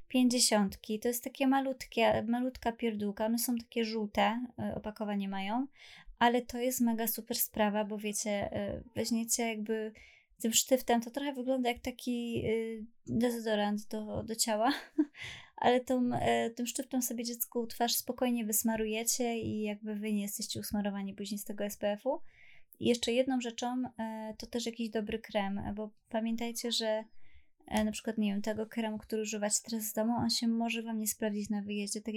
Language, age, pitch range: Polish, 20-39, 210-235 Hz